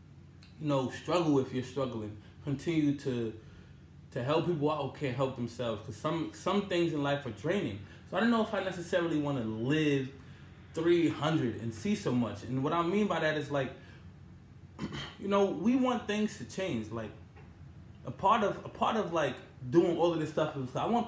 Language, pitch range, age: English, 125-175 Hz, 20-39